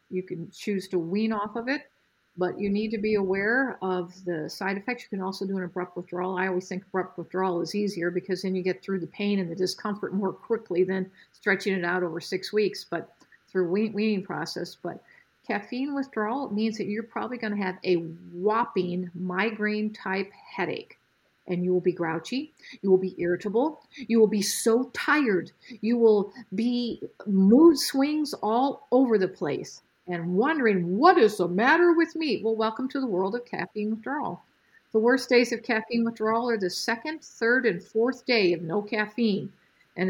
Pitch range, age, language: 190-235 Hz, 50-69, English